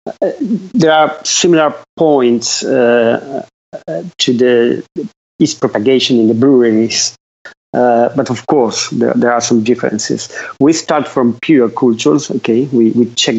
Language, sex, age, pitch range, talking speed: English, male, 40-59, 115-130 Hz, 150 wpm